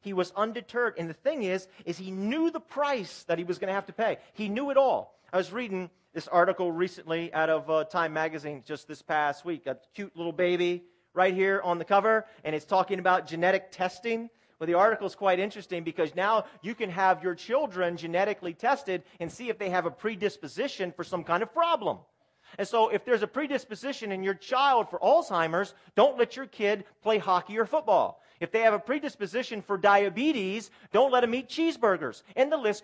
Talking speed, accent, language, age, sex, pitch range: 210 wpm, American, English, 40-59, male, 180-245 Hz